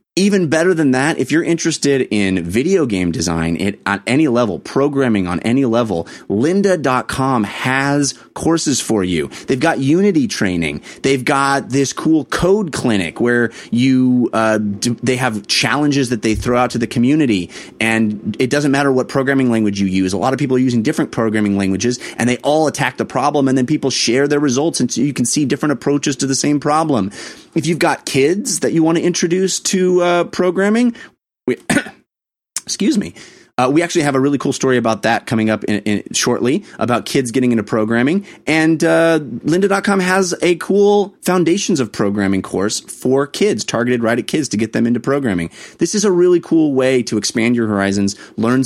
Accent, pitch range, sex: American, 115-160 Hz, male